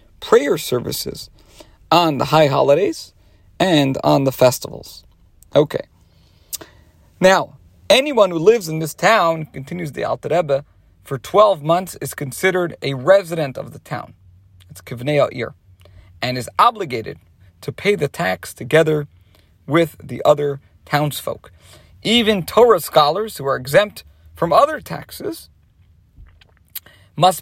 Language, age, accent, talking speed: English, 40-59, American, 120 wpm